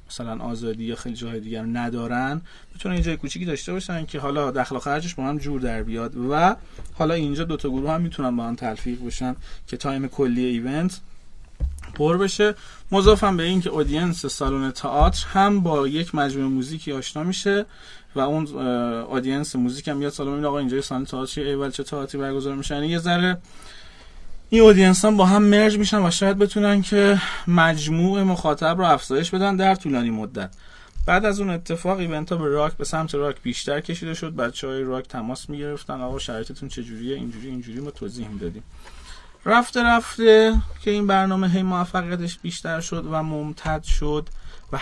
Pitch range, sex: 130-175 Hz, male